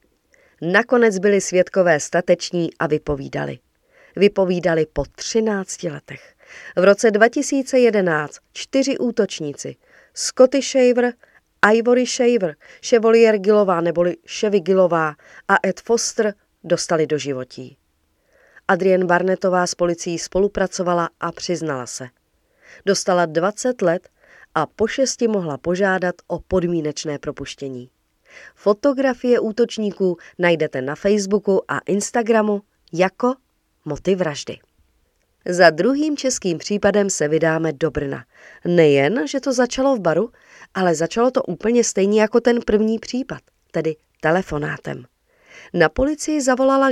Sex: female